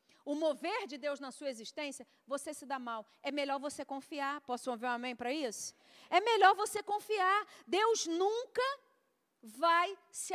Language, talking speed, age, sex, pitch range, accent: Portuguese, 170 wpm, 40-59, female, 290-390 Hz, Brazilian